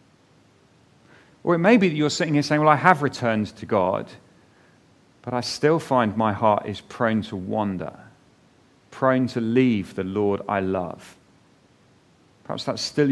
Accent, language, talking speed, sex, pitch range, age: British, English, 160 wpm, male, 110-145 Hz, 40-59